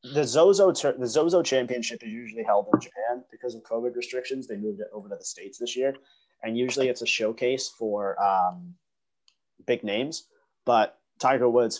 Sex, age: male, 30-49